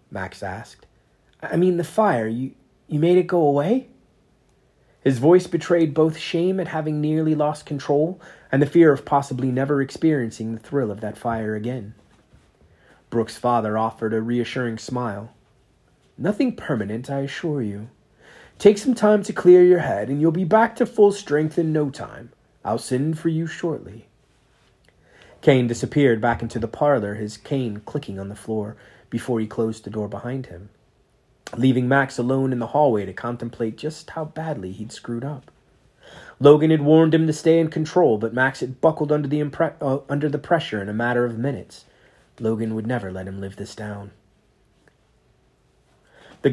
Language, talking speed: English, 175 wpm